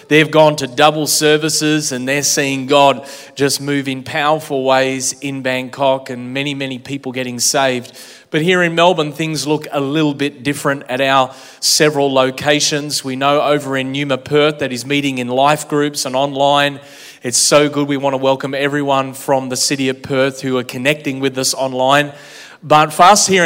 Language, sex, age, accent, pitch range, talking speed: English, male, 30-49, Australian, 135-155 Hz, 185 wpm